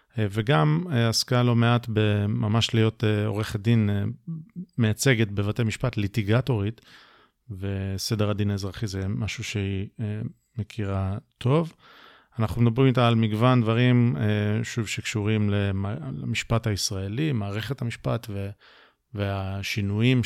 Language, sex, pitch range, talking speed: Hebrew, male, 105-125 Hz, 120 wpm